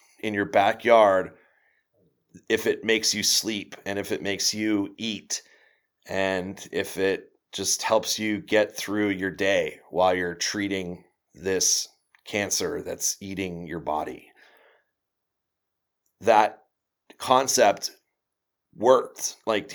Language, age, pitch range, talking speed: English, 30-49, 95-115 Hz, 110 wpm